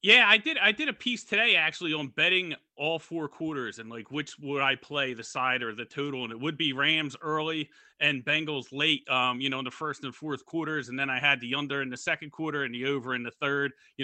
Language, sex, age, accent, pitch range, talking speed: English, male, 30-49, American, 135-165 Hz, 255 wpm